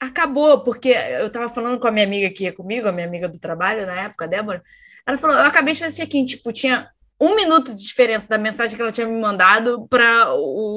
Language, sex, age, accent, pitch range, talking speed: Portuguese, female, 10-29, Brazilian, 210-285 Hz, 235 wpm